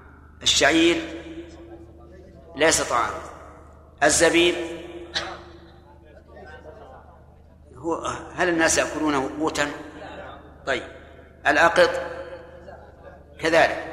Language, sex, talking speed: Arabic, male, 50 wpm